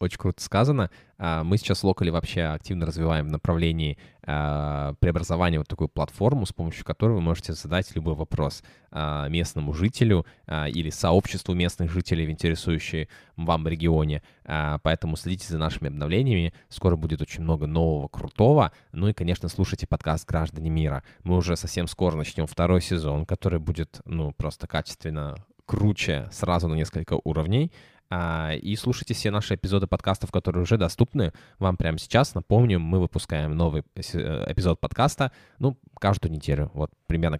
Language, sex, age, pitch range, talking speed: Russian, male, 20-39, 80-95 Hz, 150 wpm